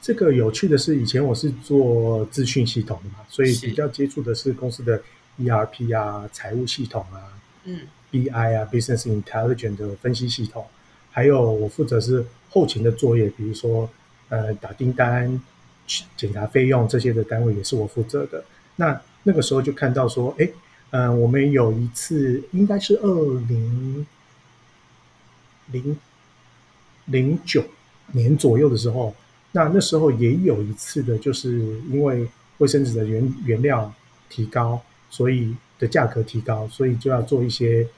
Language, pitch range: Chinese, 115-140 Hz